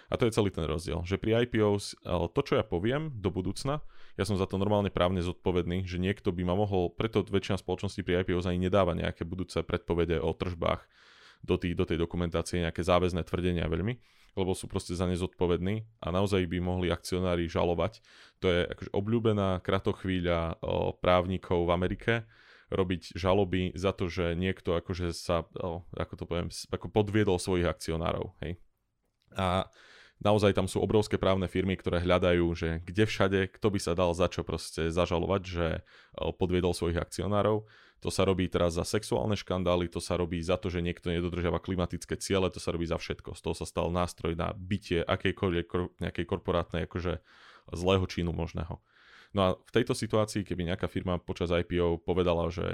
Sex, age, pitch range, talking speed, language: male, 20-39, 85-95 Hz, 175 wpm, Slovak